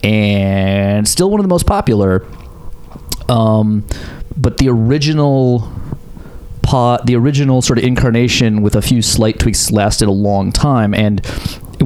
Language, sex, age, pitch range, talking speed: English, male, 30-49, 100-135 Hz, 140 wpm